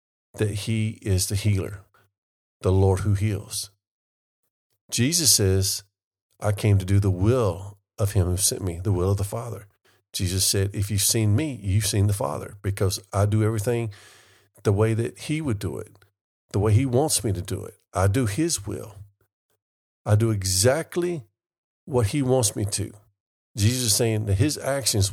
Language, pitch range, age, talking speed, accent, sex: English, 100-115 Hz, 50-69, 175 wpm, American, male